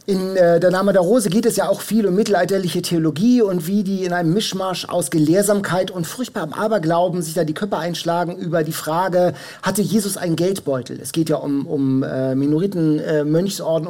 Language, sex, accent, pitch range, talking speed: German, male, German, 165-210 Hz, 200 wpm